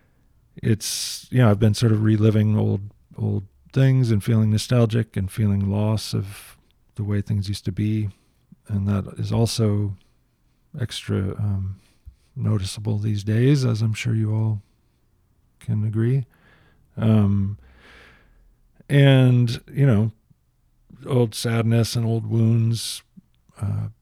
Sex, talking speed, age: male, 125 wpm, 40-59